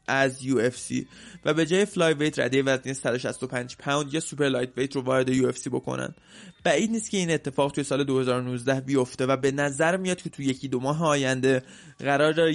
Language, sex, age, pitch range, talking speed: Persian, male, 20-39, 130-155 Hz, 185 wpm